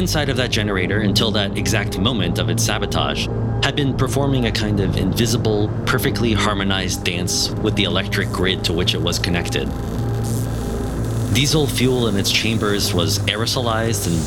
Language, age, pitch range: English, 30-49, 85-115 Hz